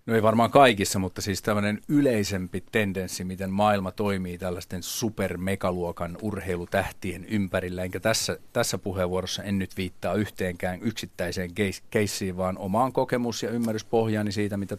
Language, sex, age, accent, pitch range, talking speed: Finnish, male, 40-59, native, 90-105 Hz, 135 wpm